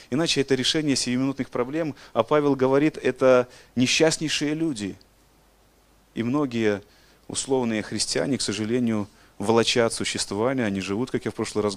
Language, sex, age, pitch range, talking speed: Russian, male, 30-49, 95-120 Hz, 135 wpm